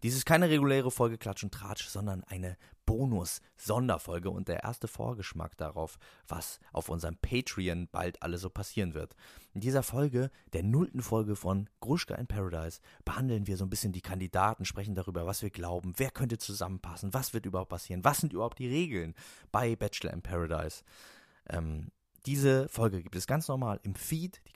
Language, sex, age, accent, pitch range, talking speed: German, male, 30-49, German, 90-115 Hz, 180 wpm